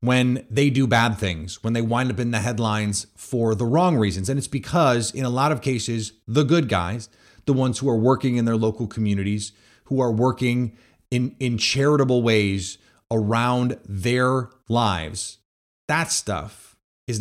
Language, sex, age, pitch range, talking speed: English, male, 30-49, 105-130 Hz, 170 wpm